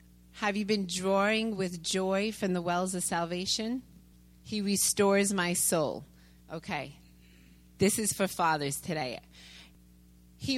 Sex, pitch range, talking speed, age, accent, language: female, 190-250 Hz, 125 wpm, 30-49, American, English